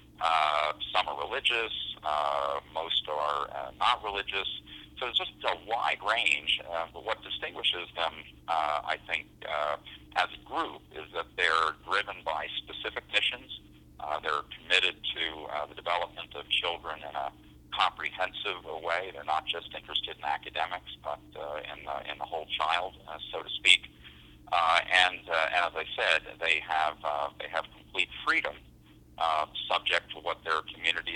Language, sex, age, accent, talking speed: English, male, 50-69, American, 160 wpm